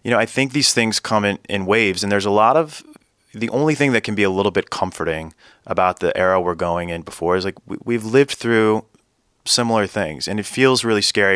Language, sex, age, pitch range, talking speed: English, male, 30-49, 90-105 Hz, 240 wpm